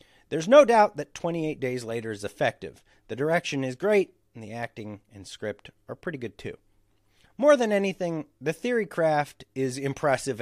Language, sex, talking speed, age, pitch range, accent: English, male, 165 wpm, 40-59, 105-160 Hz, American